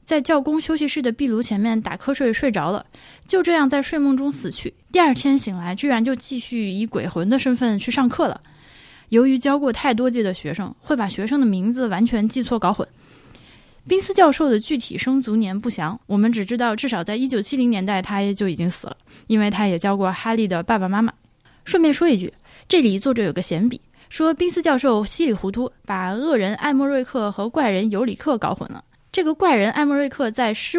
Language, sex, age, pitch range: Chinese, female, 20-39, 205-275 Hz